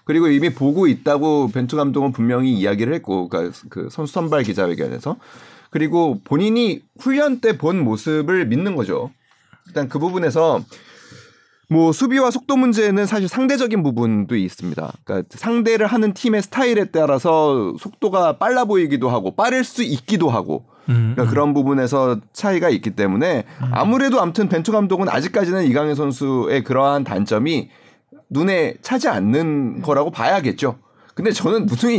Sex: male